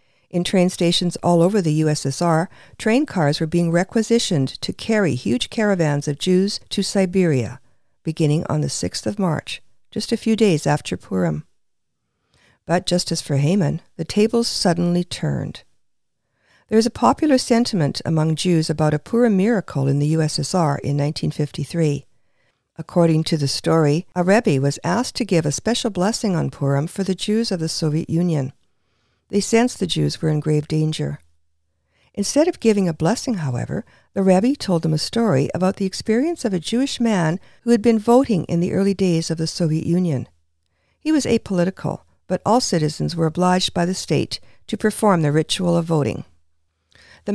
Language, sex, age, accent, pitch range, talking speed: English, female, 50-69, American, 150-205 Hz, 170 wpm